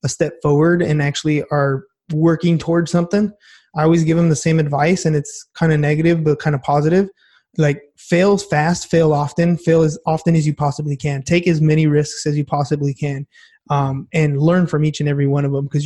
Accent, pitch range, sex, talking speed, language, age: American, 145-165 Hz, male, 210 wpm, English, 20-39